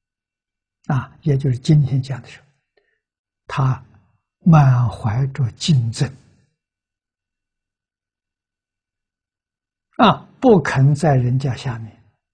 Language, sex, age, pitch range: Chinese, male, 60-79, 100-135 Hz